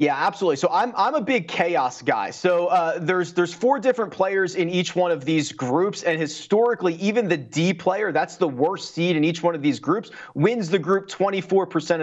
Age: 30-49